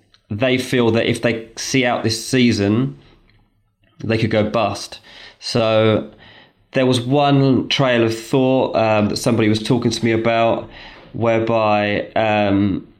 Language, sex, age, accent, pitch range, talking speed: English, male, 20-39, British, 110-125 Hz, 140 wpm